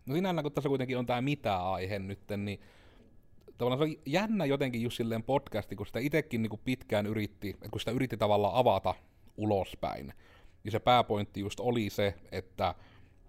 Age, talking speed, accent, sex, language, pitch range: 30-49, 170 wpm, native, male, Finnish, 95-115 Hz